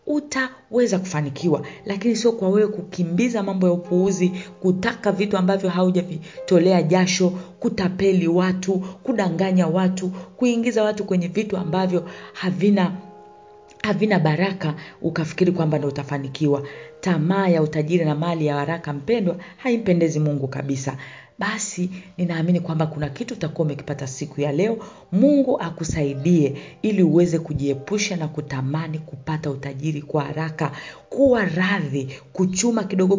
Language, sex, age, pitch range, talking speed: Swahili, female, 40-59, 150-210 Hz, 125 wpm